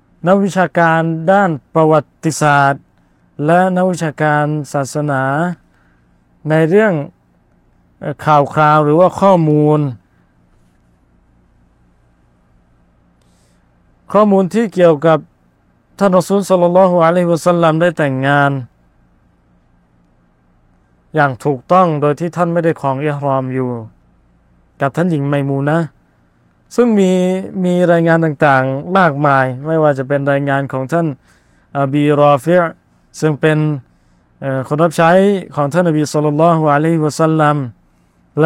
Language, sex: Thai, male